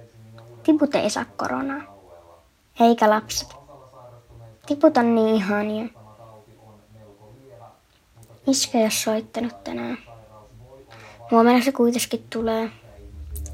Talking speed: 85 wpm